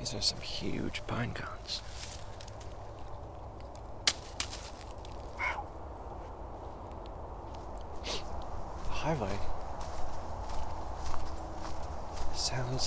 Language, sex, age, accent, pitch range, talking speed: English, male, 40-59, American, 80-105 Hz, 45 wpm